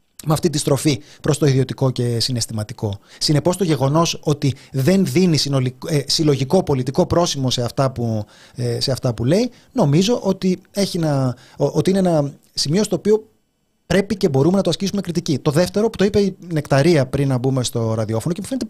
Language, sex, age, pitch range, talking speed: Greek, male, 30-49, 130-185 Hz, 195 wpm